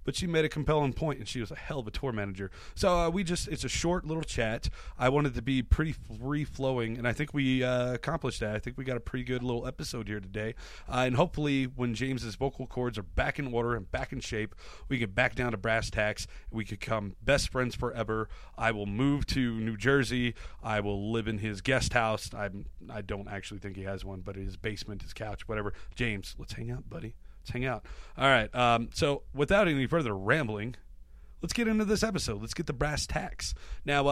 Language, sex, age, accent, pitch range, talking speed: English, male, 30-49, American, 110-140 Hz, 230 wpm